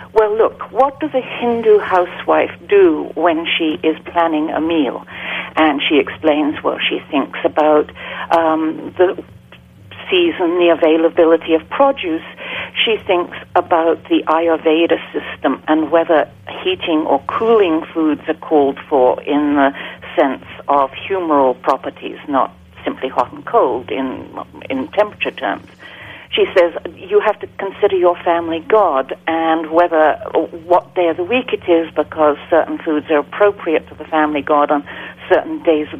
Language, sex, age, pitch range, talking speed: English, female, 60-79, 160-210 Hz, 150 wpm